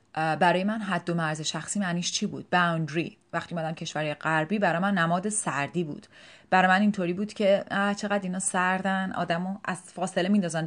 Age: 30-49